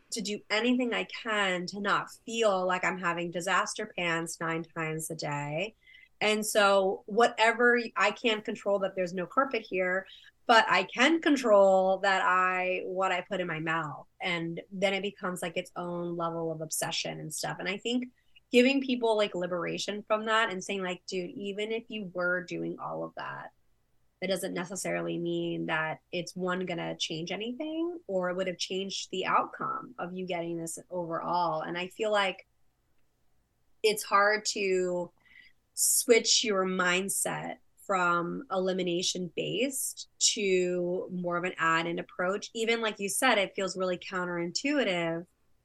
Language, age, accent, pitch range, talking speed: English, 20-39, American, 175-210 Hz, 165 wpm